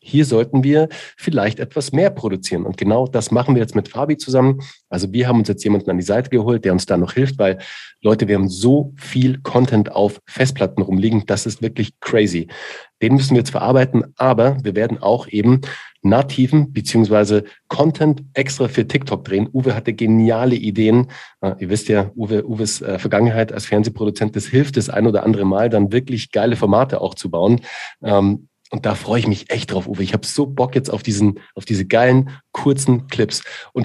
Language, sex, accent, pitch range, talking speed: German, male, German, 105-135 Hz, 195 wpm